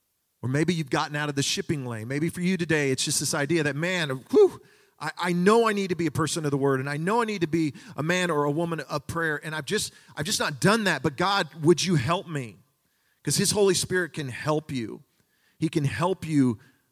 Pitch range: 120-170 Hz